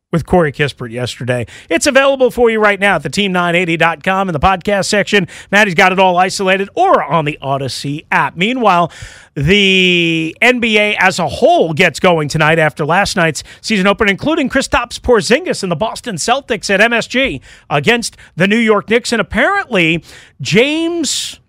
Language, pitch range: English, 155-220 Hz